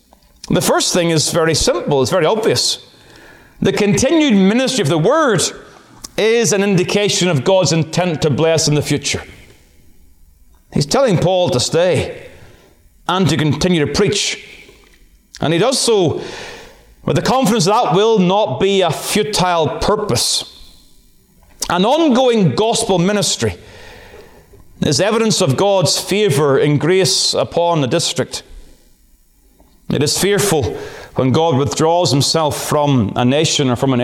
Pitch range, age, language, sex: 140-185 Hz, 30-49, English, male